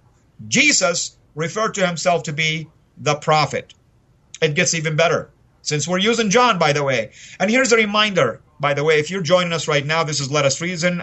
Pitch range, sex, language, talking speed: 150-195 Hz, male, English, 200 wpm